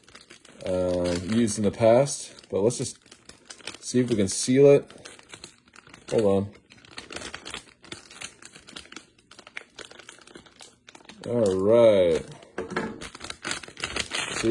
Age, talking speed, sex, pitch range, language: 30-49, 80 wpm, male, 115-140 Hz, English